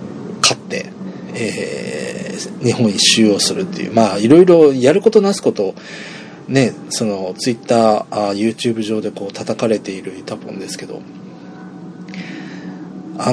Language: Japanese